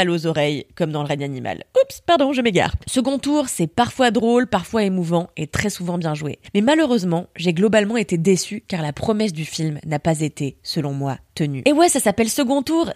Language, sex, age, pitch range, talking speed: French, female, 20-39, 185-250 Hz, 215 wpm